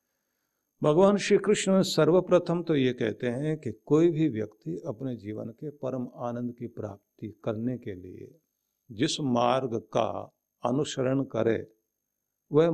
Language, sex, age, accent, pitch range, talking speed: Hindi, male, 50-69, native, 115-150 Hz, 130 wpm